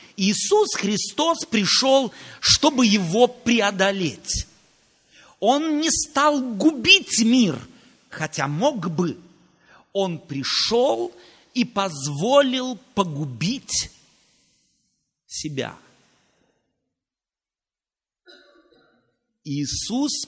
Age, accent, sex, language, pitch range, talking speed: 50-69, native, male, Russian, 195-295 Hz, 60 wpm